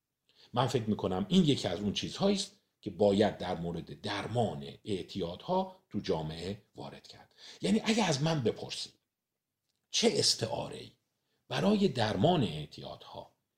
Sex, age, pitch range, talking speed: male, 50-69, 95-155 Hz, 130 wpm